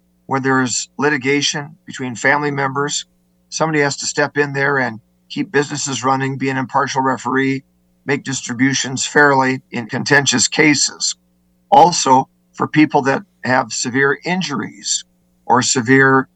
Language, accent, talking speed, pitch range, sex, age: English, American, 130 wpm, 125-150 Hz, male, 50-69